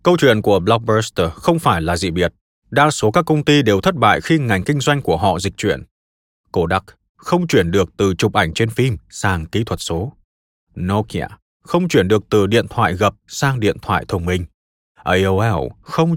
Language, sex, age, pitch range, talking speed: Vietnamese, male, 20-39, 95-145 Hz, 195 wpm